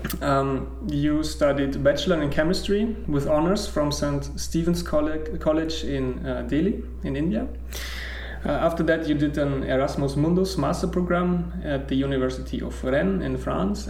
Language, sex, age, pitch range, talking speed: English, male, 30-49, 125-160 Hz, 150 wpm